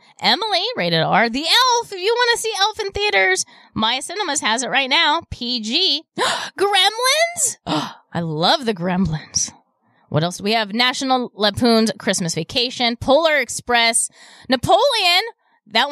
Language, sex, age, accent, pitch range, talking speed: English, female, 20-39, American, 210-295 Hz, 145 wpm